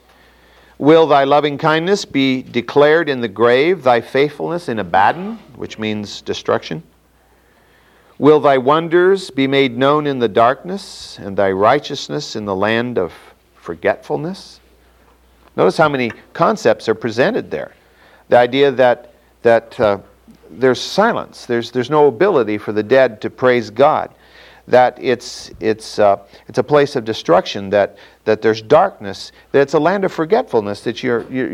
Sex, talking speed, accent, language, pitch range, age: male, 150 wpm, American, English, 110-145 Hz, 50-69